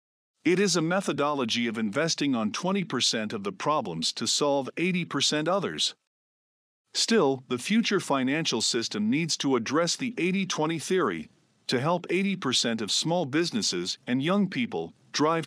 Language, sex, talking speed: English, male, 140 wpm